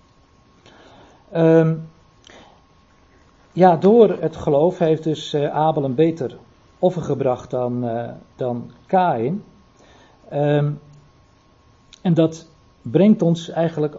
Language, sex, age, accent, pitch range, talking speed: Dutch, male, 50-69, Dutch, 130-160 Hz, 100 wpm